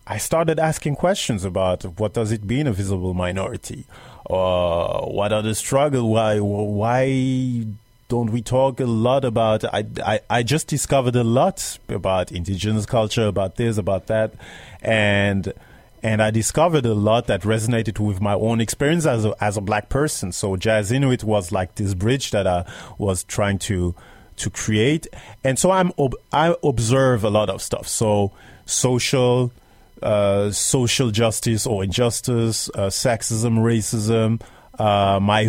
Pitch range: 100-125 Hz